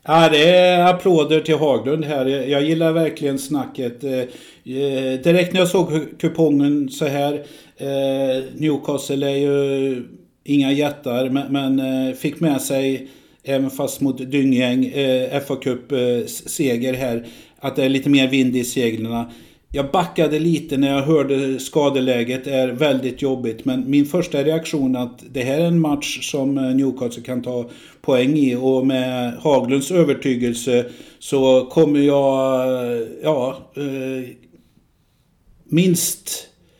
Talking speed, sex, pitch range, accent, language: 130 wpm, male, 130-150 Hz, native, Swedish